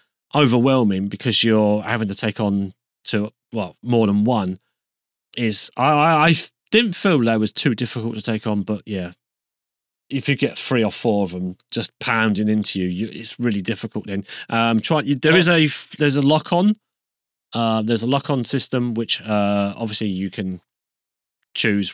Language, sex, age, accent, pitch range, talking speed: English, male, 30-49, British, 105-140 Hz, 180 wpm